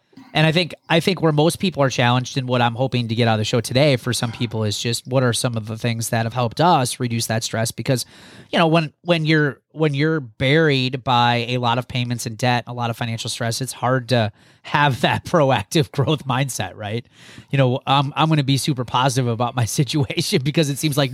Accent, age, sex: American, 30-49, male